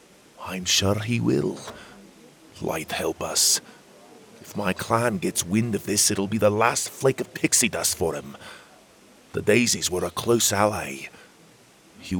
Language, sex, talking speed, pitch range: English, male, 150 wpm, 100-130 Hz